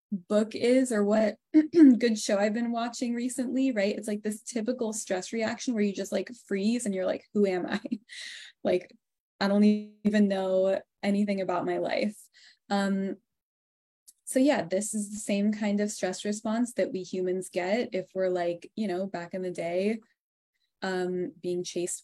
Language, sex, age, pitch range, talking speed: English, female, 10-29, 185-225 Hz, 175 wpm